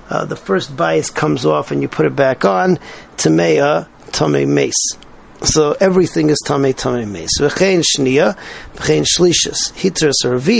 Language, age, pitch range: English, 40-59, 125-170 Hz